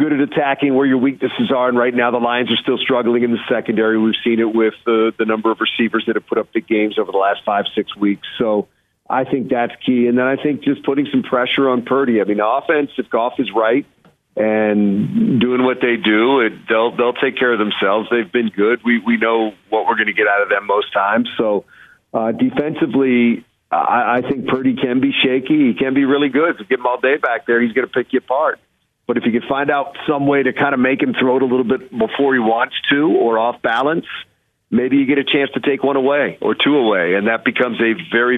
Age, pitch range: 50-69, 115-135 Hz